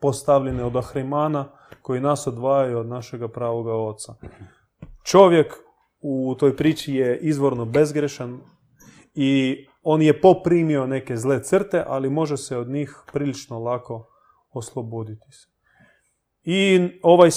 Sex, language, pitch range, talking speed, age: male, Croatian, 120-155 Hz, 120 wpm, 30-49